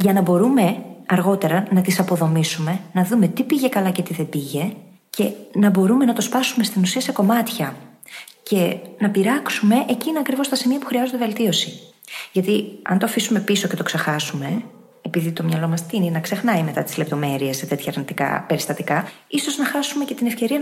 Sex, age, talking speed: female, 20-39, 185 wpm